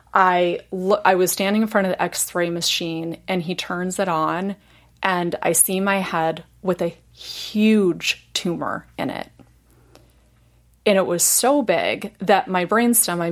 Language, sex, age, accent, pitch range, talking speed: English, female, 30-49, American, 165-190 Hz, 160 wpm